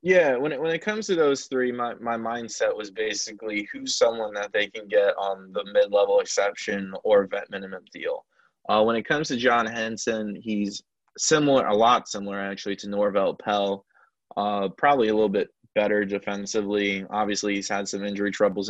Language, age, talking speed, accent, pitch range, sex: English, 20-39, 180 wpm, American, 100-120 Hz, male